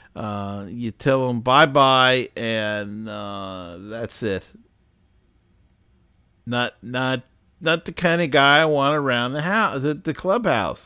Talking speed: 140 wpm